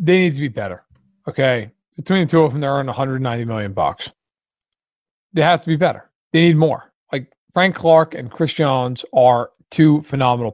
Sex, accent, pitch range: male, American, 135-175 Hz